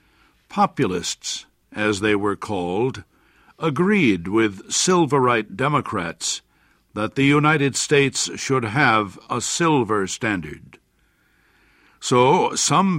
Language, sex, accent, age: English, male, American, 60-79